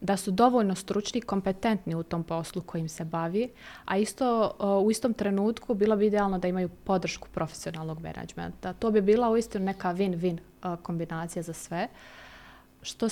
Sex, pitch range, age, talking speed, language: female, 180-225 Hz, 20-39, 160 wpm, Croatian